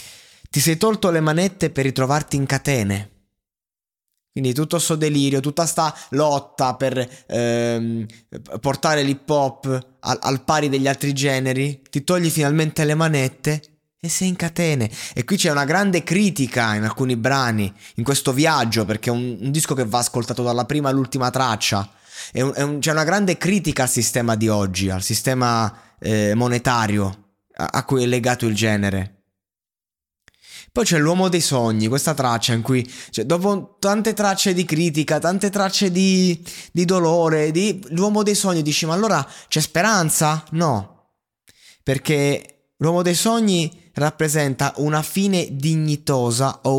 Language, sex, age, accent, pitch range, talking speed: Italian, male, 20-39, native, 120-160 Hz, 155 wpm